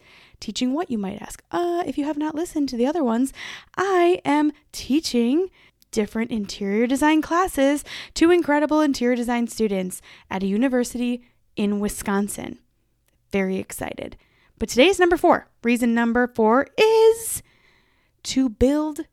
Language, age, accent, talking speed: English, 10-29, American, 140 wpm